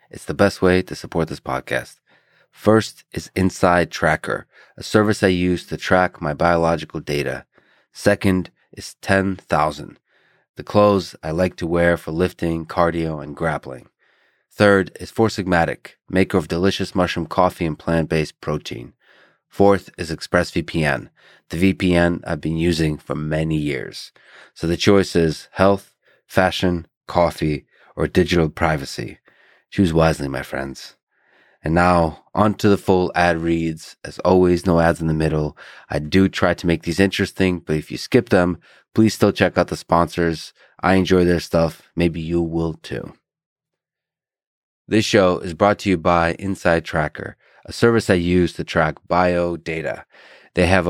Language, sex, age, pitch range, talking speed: English, male, 30-49, 80-95 Hz, 155 wpm